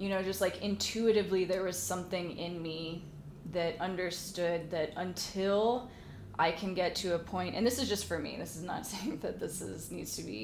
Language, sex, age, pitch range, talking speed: English, female, 20-39, 170-200 Hz, 205 wpm